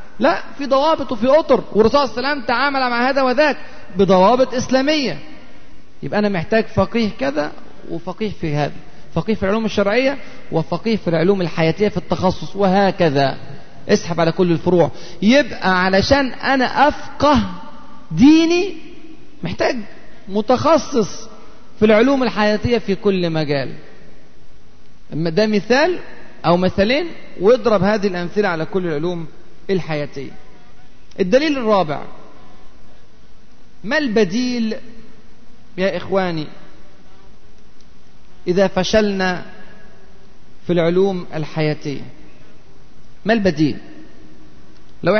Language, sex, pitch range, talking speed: Arabic, male, 170-230 Hz, 100 wpm